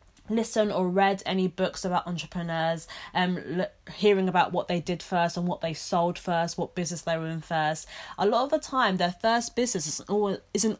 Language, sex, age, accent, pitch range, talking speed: English, female, 20-39, British, 165-200 Hz, 195 wpm